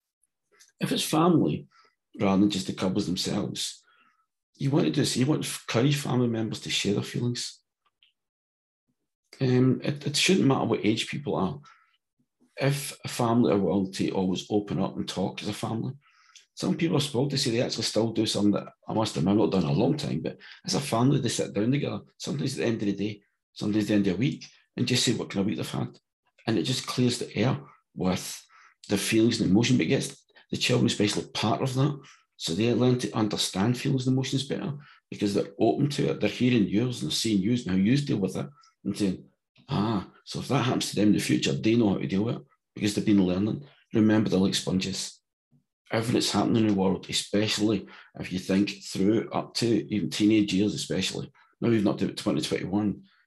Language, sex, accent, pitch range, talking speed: English, male, British, 95-125 Hz, 220 wpm